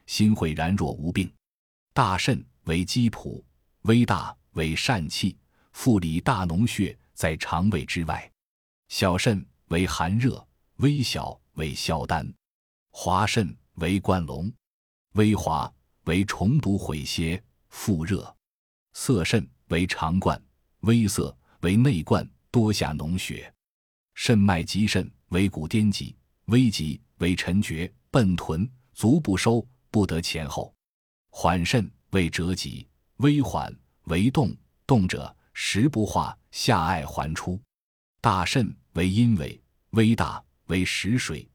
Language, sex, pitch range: Chinese, male, 80-110 Hz